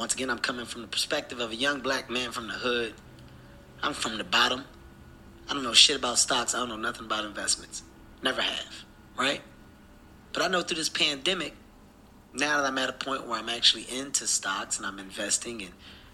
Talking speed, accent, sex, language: 205 wpm, American, male, English